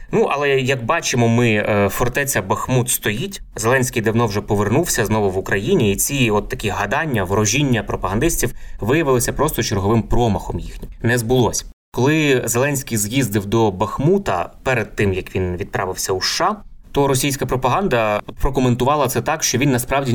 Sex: male